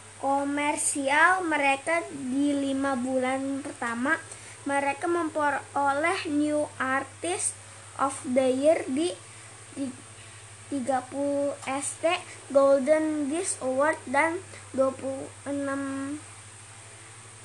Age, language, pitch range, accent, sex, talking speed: 20-39, Indonesian, 250-300 Hz, native, female, 70 wpm